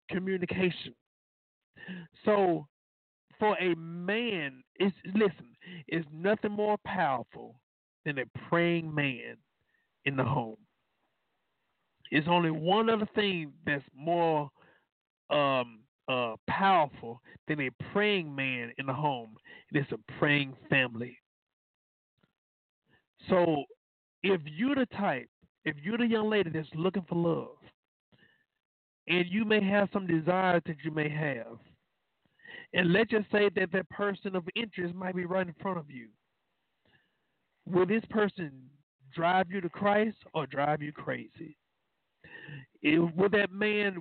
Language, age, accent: English, 50-69, American